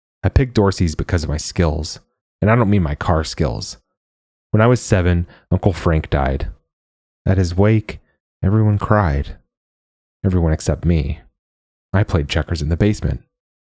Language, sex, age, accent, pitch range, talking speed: English, male, 30-49, American, 75-95 Hz, 155 wpm